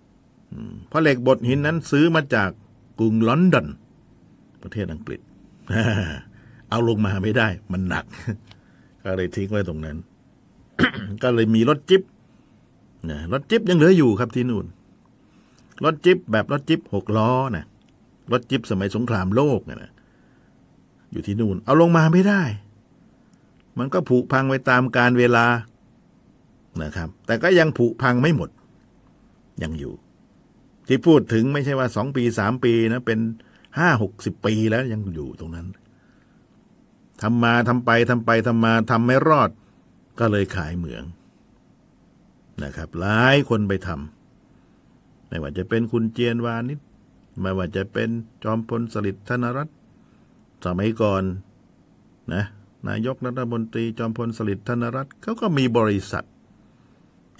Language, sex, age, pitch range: Thai, male, 60-79, 100-125 Hz